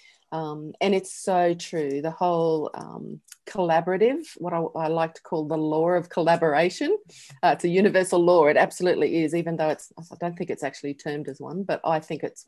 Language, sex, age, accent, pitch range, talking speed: English, female, 40-59, Australian, 160-205 Hz, 200 wpm